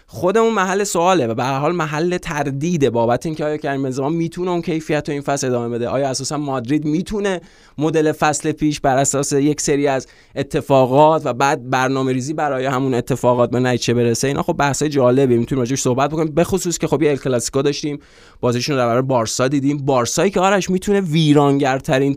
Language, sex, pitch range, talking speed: Persian, male, 130-155 Hz, 180 wpm